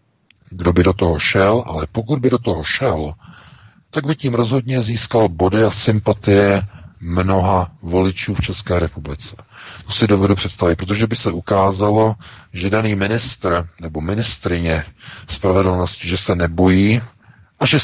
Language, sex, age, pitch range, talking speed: Czech, male, 40-59, 85-100 Hz, 145 wpm